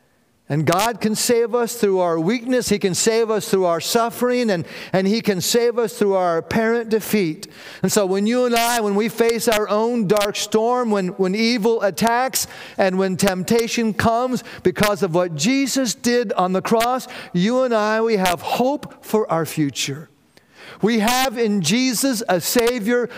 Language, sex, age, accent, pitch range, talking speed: English, male, 50-69, American, 160-225 Hz, 180 wpm